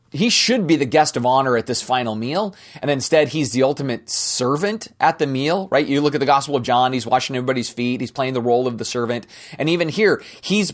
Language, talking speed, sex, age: English, 240 wpm, male, 30-49